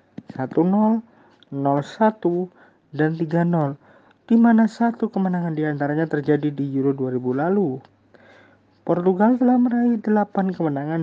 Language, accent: Indonesian, native